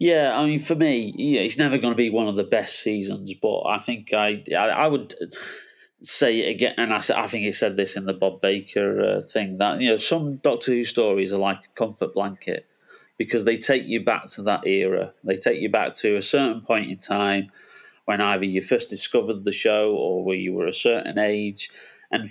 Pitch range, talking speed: 100-120 Hz, 225 wpm